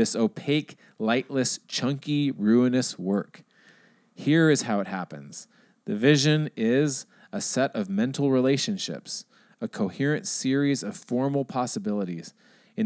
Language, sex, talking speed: English, male, 120 wpm